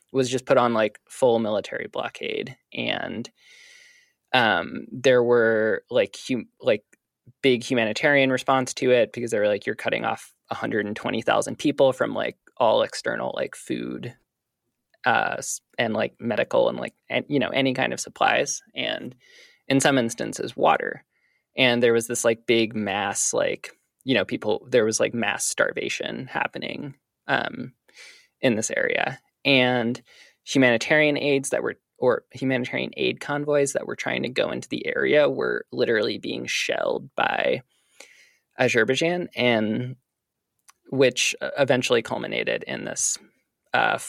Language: English